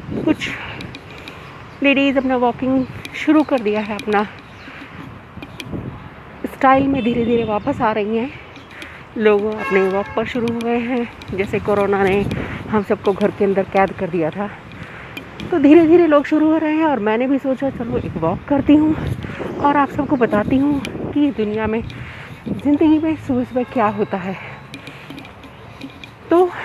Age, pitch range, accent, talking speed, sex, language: 40-59, 210-280 Hz, native, 160 wpm, female, Hindi